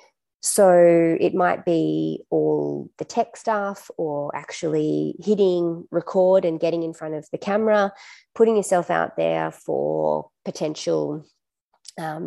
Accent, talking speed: Australian, 125 wpm